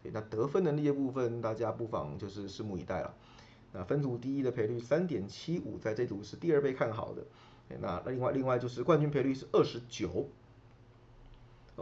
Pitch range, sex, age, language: 115-145 Hz, male, 20-39, Chinese